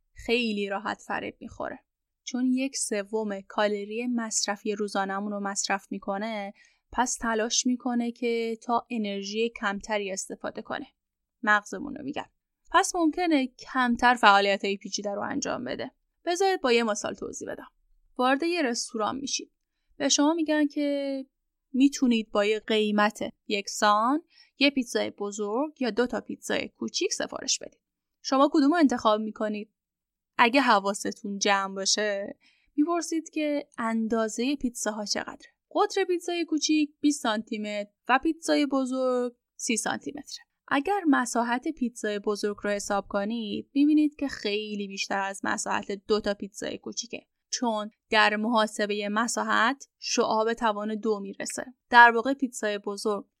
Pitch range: 210-275 Hz